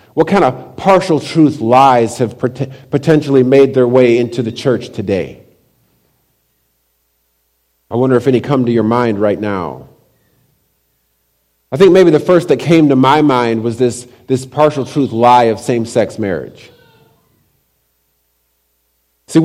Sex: male